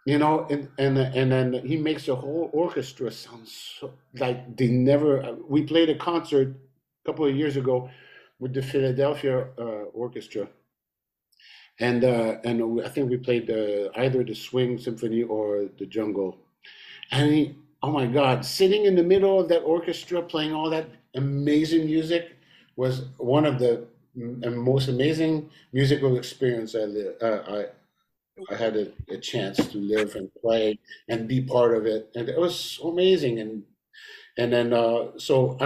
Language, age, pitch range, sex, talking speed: English, 50-69, 115-145 Hz, male, 165 wpm